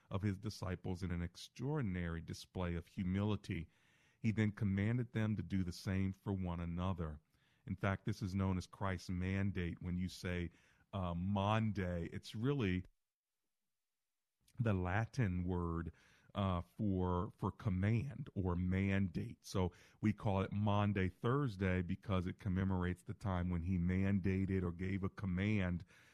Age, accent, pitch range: 40-59, American, 95-110 Hz